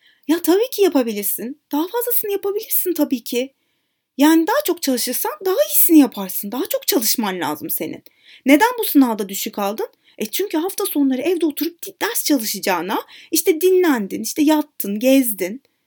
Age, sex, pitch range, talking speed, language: 30-49, female, 265-355 Hz, 150 wpm, Turkish